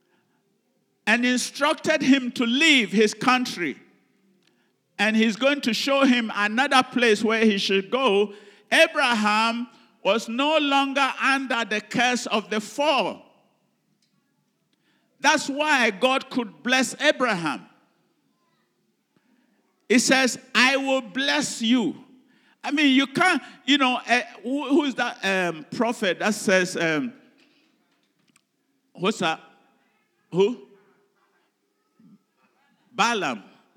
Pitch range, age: 225-280 Hz, 50-69